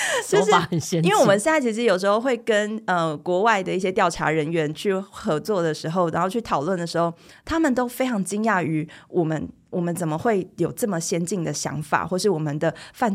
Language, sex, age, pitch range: Chinese, female, 20-39, 160-215 Hz